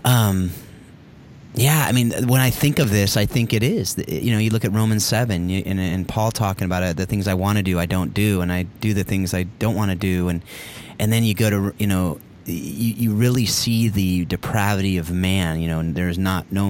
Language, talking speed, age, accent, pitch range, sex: English, 245 wpm, 30-49, American, 90-110 Hz, male